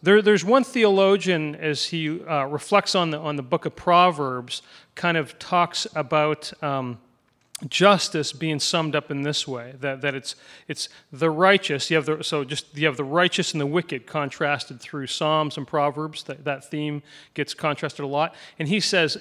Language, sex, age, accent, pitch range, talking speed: English, male, 40-59, American, 145-175 Hz, 185 wpm